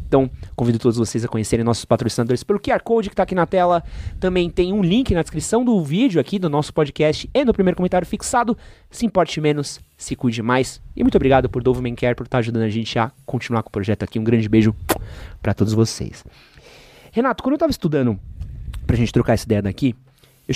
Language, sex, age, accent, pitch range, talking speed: Portuguese, male, 30-49, Brazilian, 115-175 Hz, 220 wpm